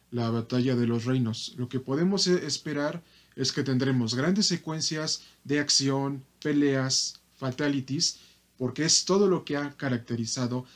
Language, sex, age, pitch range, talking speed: Spanish, male, 40-59, 120-150 Hz, 140 wpm